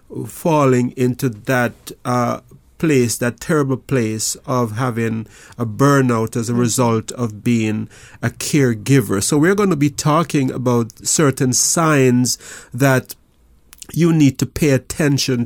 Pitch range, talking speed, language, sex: 120-140 Hz, 130 wpm, English, male